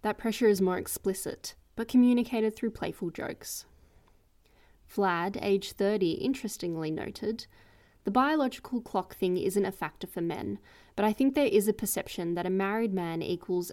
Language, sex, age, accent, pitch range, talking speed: English, female, 10-29, Australian, 175-215 Hz, 155 wpm